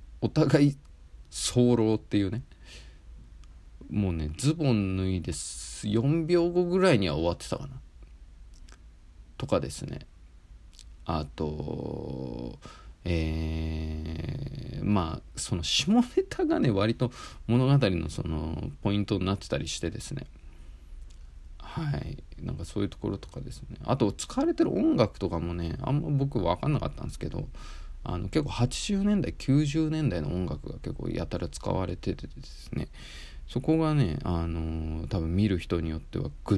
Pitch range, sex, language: 80-130 Hz, male, Japanese